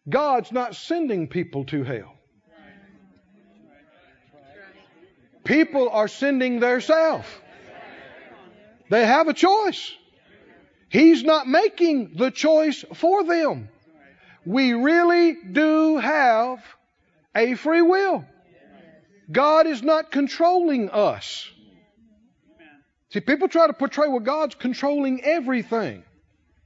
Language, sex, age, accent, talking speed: English, male, 50-69, American, 95 wpm